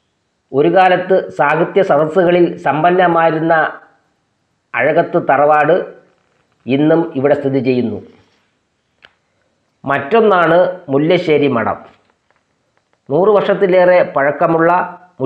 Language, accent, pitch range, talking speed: English, Indian, 140-175 Hz, 70 wpm